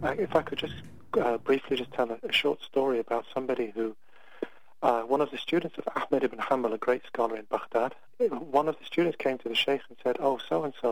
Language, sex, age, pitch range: English, male, 40-59, 120-145 Hz